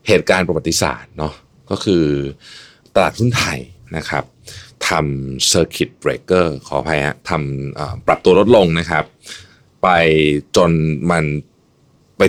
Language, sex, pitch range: Thai, male, 75-115 Hz